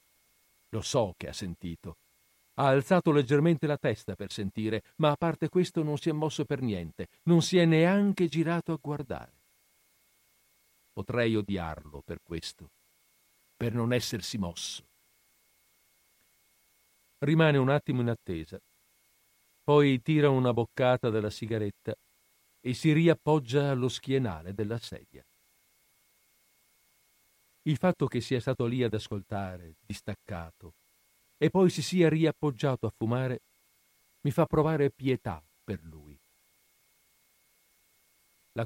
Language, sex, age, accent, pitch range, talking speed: Italian, male, 50-69, native, 100-145 Hz, 120 wpm